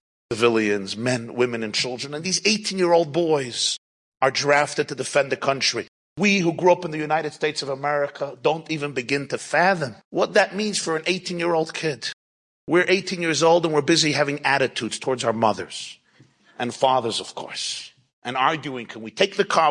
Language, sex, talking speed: English, male, 195 wpm